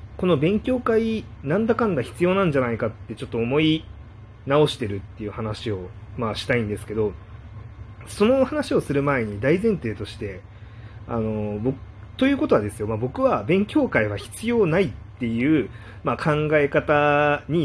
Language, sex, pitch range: Japanese, male, 105-150 Hz